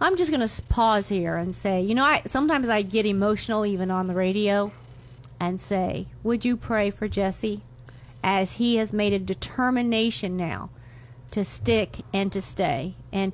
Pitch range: 190-240 Hz